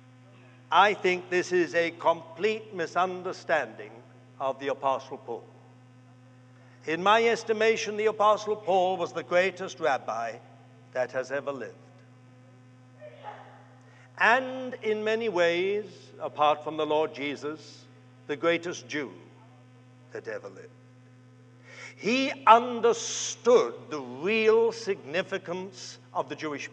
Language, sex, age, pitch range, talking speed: English, male, 60-79, 130-200 Hz, 110 wpm